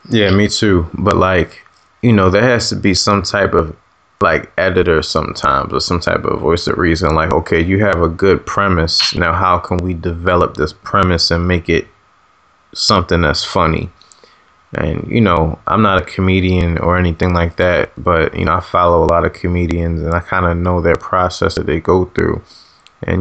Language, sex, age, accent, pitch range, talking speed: English, male, 20-39, American, 85-95 Hz, 195 wpm